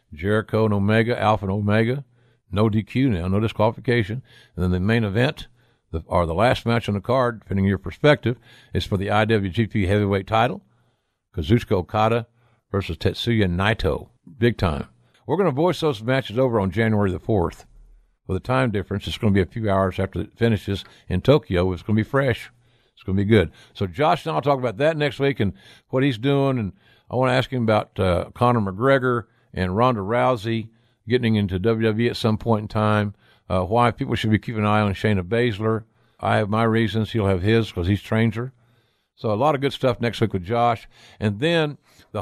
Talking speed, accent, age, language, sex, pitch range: 210 wpm, American, 60-79, English, male, 100-120 Hz